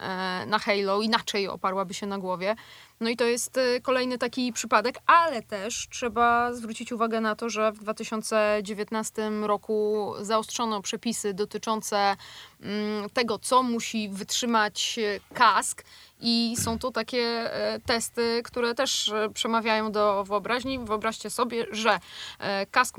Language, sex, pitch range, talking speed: Polish, female, 210-235 Hz, 125 wpm